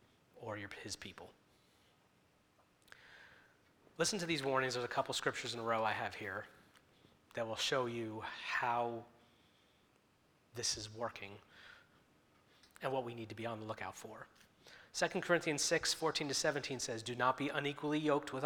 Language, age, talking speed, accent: English, 30-49, 165 wpm, American